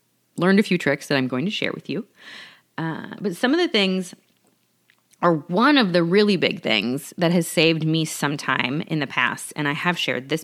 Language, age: English, 30-49